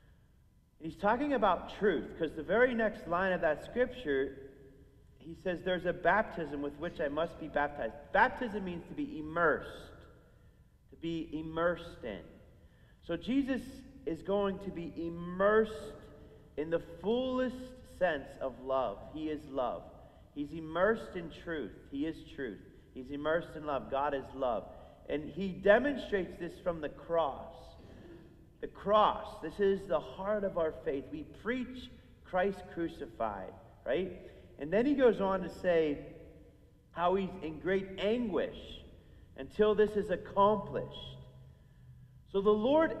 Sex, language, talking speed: male, English, 140 wpm